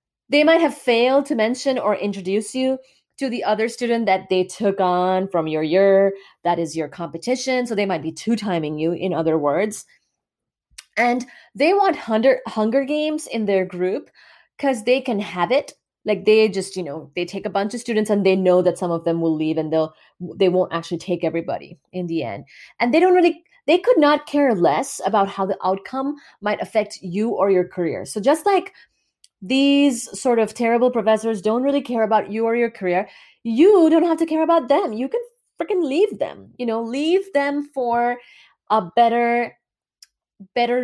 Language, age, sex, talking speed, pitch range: English, 30-49, female, 195 wpm, 185-255 Hz